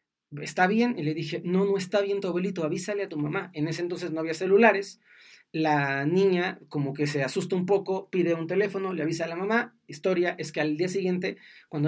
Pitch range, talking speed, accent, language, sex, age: 155-195 Hz, 220 wpm, Mexican, Spanish, male, 30-49